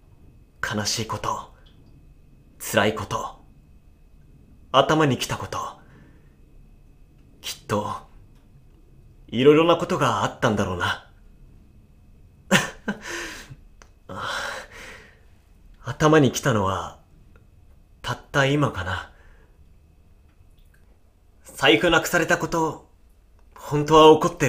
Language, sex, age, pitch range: Japanese, male, 30-49, 80-120 Hz